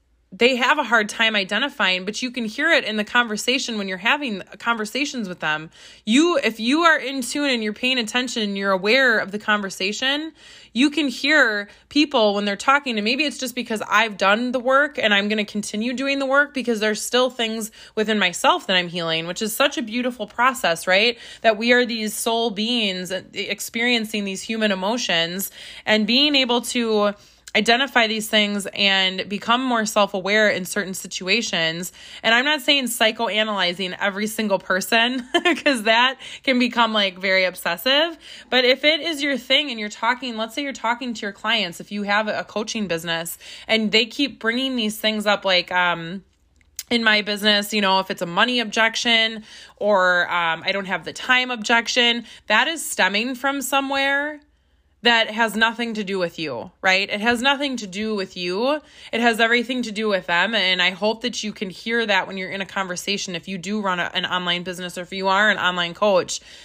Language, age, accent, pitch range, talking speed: English, 20-39, American, 195-245 Hz, 195 wpm